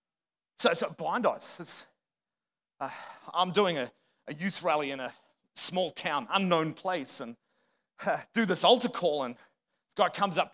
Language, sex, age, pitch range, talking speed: English, male, 40-59, 150-230 Hz, 165 wpm